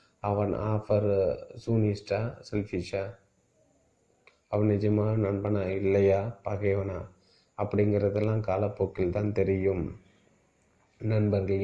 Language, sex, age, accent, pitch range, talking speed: Tamil, male, 30-49, native, 95-105 Hz, 70 wpm